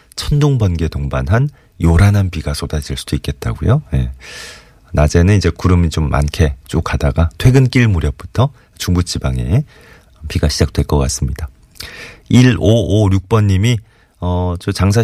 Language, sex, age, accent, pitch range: Korean, male, 30-49, native, 75-105 Hz